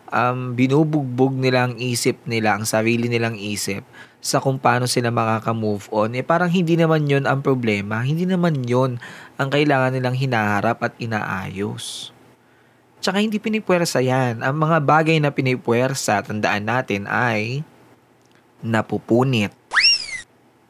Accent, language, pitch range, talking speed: native, Filipino, 115-155 Hz, 130 wpm